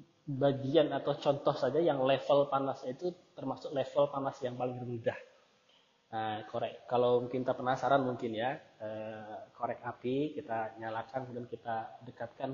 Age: 20-39